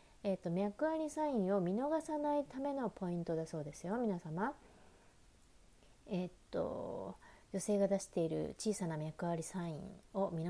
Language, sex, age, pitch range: Japanese, female, 30-49, 170-230 Hz